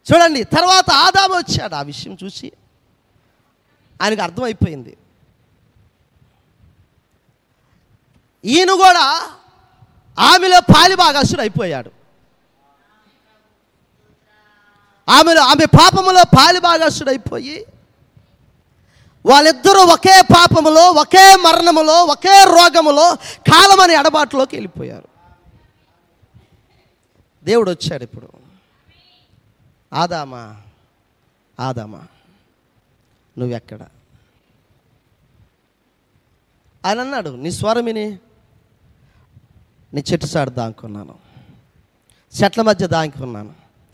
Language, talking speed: Telugu, 65 wpm